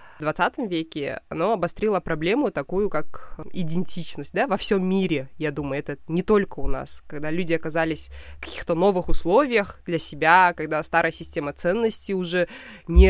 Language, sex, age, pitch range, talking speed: Russian, female, 20-39, 160-195 Hz, 160 wpm